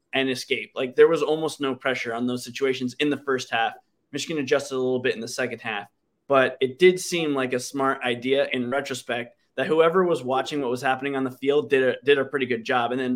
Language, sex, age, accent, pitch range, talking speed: English, male, 20-39, American, 130-155 Hz, 240 wpm